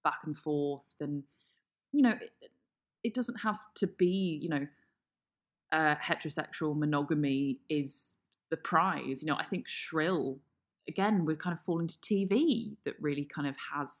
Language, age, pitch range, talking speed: English, 20-39, 130-160 Hz, 160 wpm